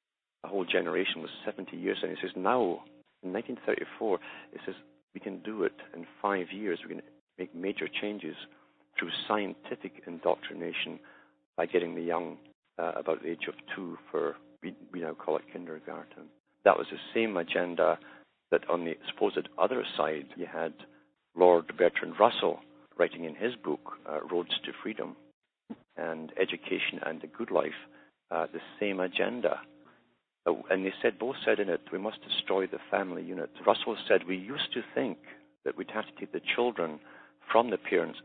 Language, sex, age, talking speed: English, male, 50-69, 170 wpm